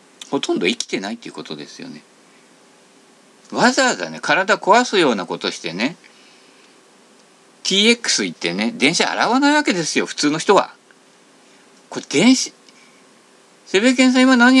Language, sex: Japanese, male